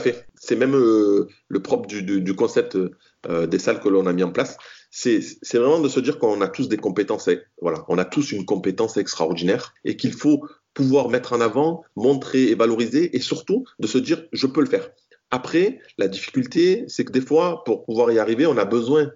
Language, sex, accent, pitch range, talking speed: French, male, French, 115-160 Hz, 220 wpm